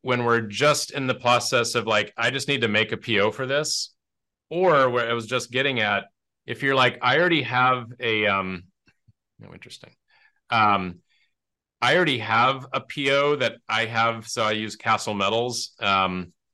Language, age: English, 30-49